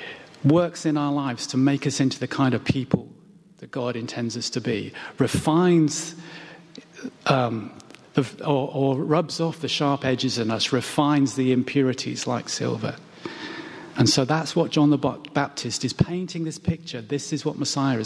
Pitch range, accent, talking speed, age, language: 135-170 Hz, British, 165 wpm, 40-59, English